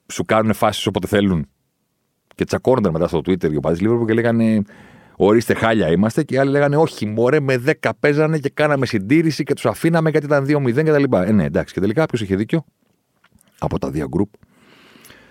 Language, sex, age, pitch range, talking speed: Greek, male, 40-59, 75-130 Hz, 190 wpm